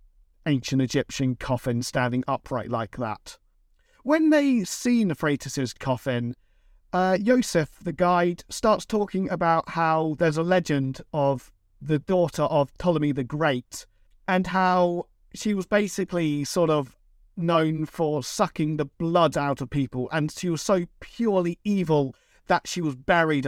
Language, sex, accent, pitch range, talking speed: English, male, British, 130-185 Hz, 140 wpm